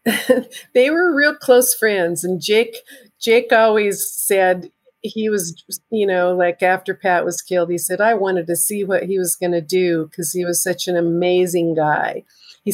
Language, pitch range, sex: English, 175-210 Hz, female